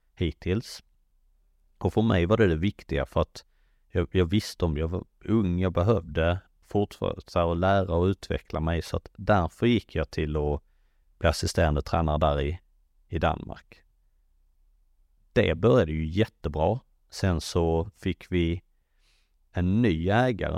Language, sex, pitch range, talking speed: Swedish, male, 75-95 Hz, 145 wpm